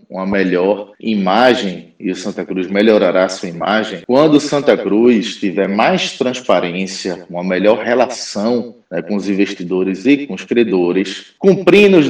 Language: Portuguese